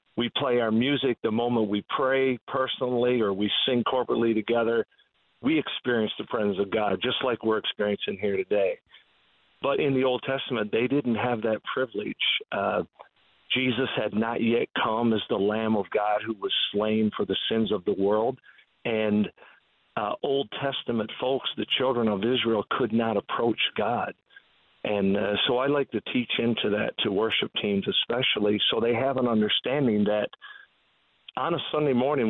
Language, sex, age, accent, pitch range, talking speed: English, male, 50-69, American, 105-125 Hz, 170 wpm